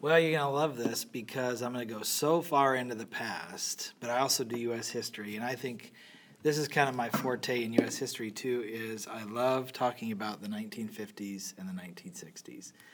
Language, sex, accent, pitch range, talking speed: English, male, American, 115-150 Hz, 210 wpm